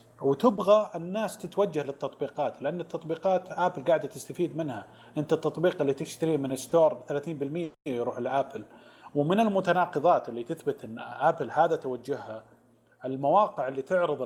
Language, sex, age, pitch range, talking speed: Arabic, male, 30-49, 130-170 Hz, 125 wpm